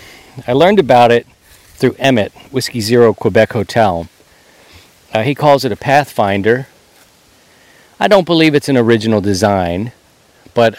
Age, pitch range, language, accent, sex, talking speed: 50-69, 100-135 Hz, English, American, male, 135 wpm